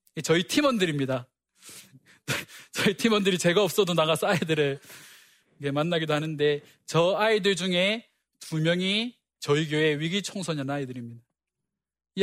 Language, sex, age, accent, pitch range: Korean, male, 20-39, native, 150-195 Hz